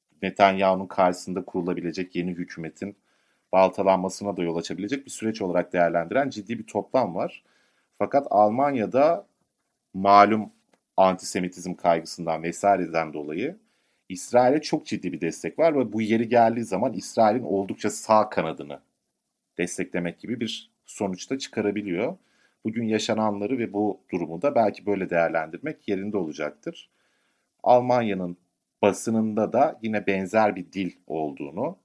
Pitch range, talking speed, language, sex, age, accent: 90-110 Hz, 115 wpm, Turkish, male, 40-59, native